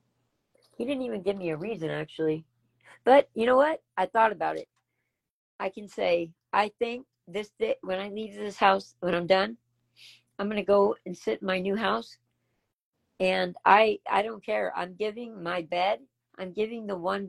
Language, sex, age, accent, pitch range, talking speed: English, female, 50-69, American, 175-230 Hz, 185 wpm